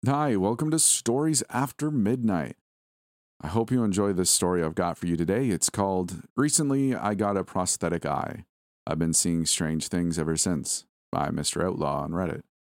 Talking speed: 175 wpm